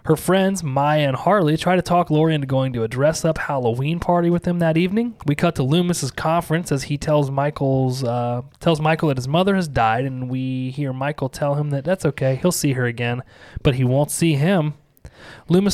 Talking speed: 215 wpm